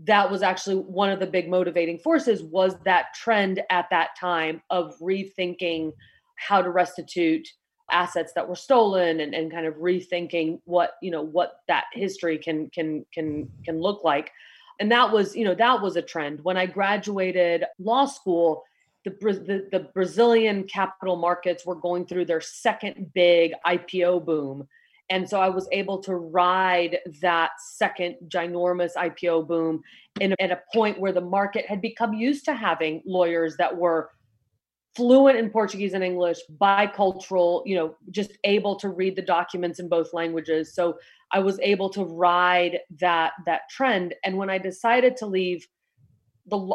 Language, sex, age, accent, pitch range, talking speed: English, female, 30-49, American, 170-195 Hz, 165 wpm